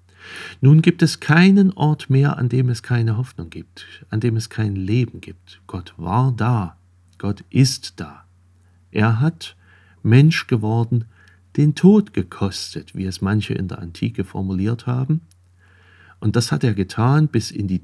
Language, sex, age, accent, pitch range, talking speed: German, male, 50-69, German, 90-125 Hz, 160 wpm